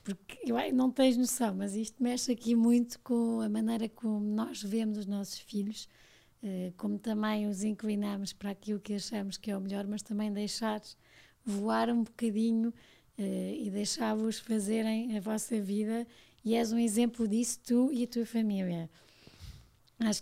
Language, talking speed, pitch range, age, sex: Portuguese, 165 wpm, 205-235 Hz, 20-39, female